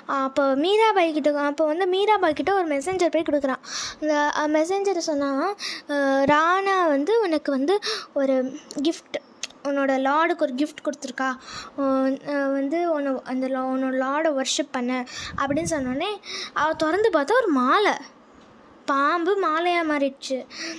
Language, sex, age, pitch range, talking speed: Tamil, female, 20-39, 280-370 Hz, 120 wpm